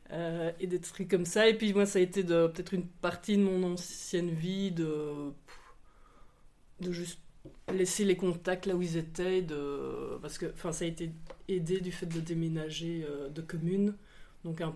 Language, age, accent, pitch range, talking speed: French, 30-49, French, 160-185 Hz, 185 wpm